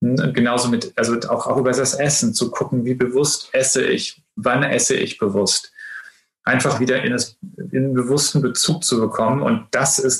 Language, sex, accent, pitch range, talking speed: German, male, German, 115-145 Hz, 170 wpm